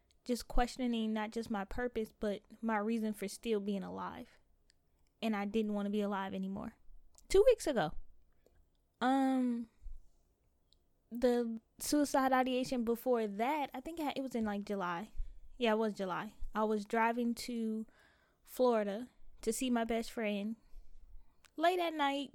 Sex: female